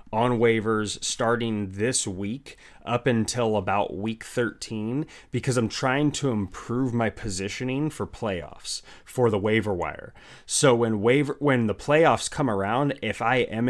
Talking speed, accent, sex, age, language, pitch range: 150 wpm, American, male, 30-49, English, 105-130 Hz